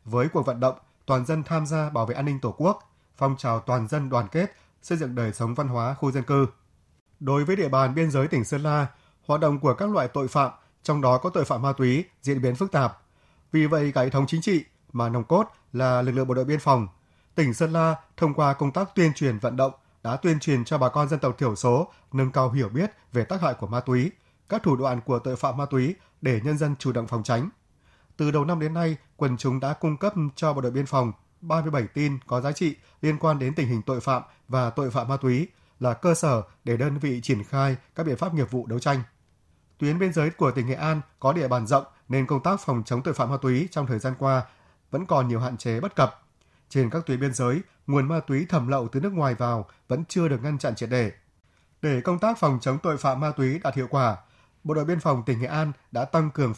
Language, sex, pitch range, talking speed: Vietnamese, male, 125-155 Hz, 255 wpm